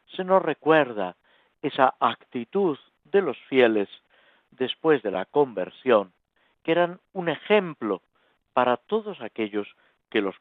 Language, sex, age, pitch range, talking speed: Spanish, male, 50-69, 105-175 Hz, 120 wpm